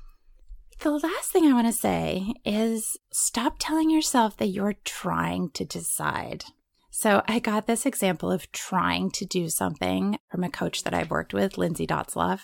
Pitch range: 160-265 Hz